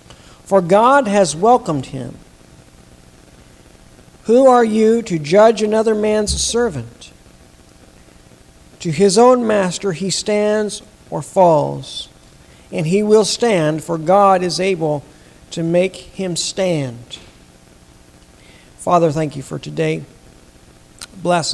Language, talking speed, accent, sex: English, 110 wpm, American, male